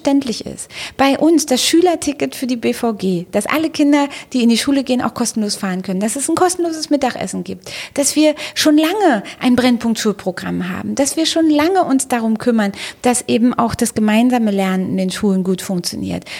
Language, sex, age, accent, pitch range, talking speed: German, female, 30-49, German, 200-270 Hz, 185 wpm